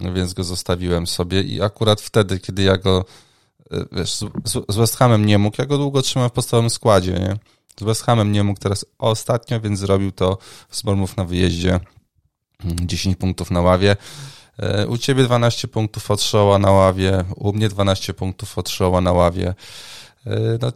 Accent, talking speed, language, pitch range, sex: native, 160 wpm, Polish, 95-120 Hz, male